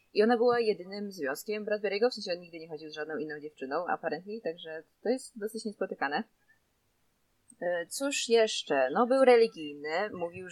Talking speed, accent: 160 wpm, native